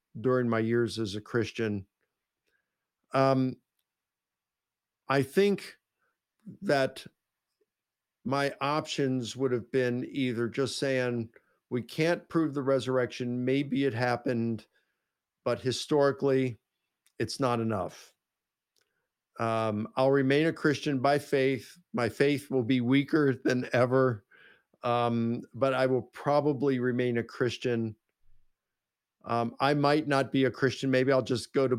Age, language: 50-69, English